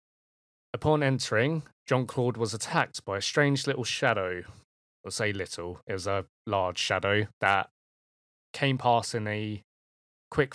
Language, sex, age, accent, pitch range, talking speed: English, male, 20-39, British, 95-120 Hz, 140 wpm